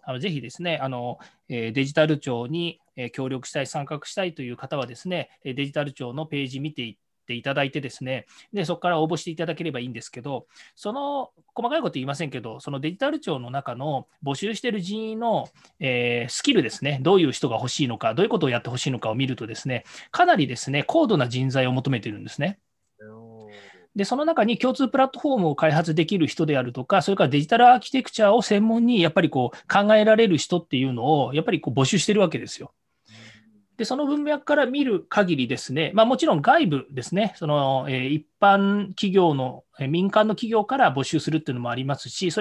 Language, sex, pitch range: Japanese, male, 135-205 Hz